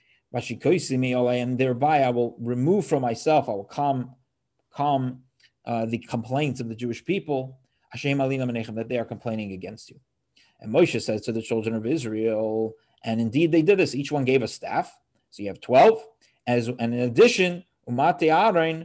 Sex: male